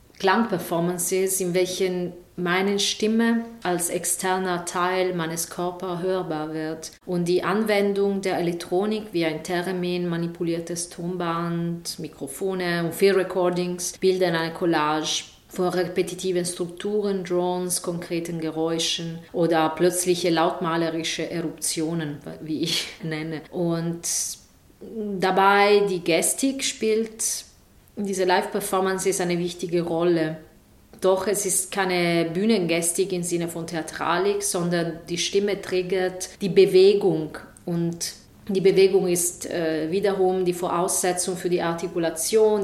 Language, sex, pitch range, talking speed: German, female, 170-195 Hz, 115 wpm